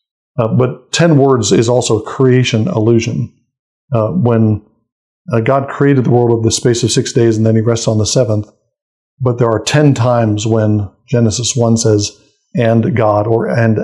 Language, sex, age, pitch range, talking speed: English, male, 50-69, 110-130 Hz, 180 wpm